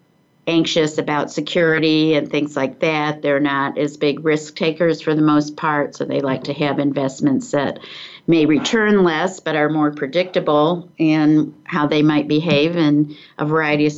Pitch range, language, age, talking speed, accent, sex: 150-165 Hz, English, 50-69, 170 wpm, American, female